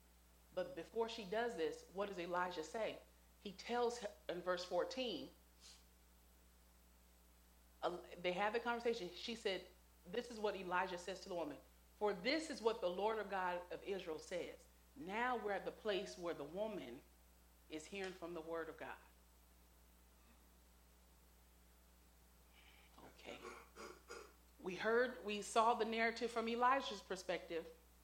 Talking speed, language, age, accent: 140 wpm, English, 40-59, American